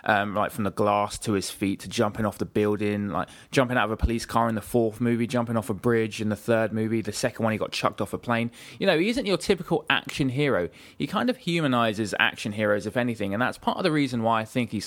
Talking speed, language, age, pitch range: 270 wpm, English, 20-39, 105-130 Hz